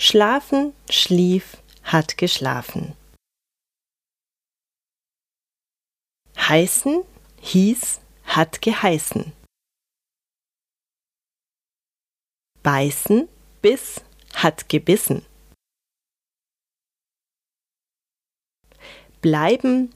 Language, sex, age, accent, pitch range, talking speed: German, female, 30-49, German, 165-240 Hz, 40 wpm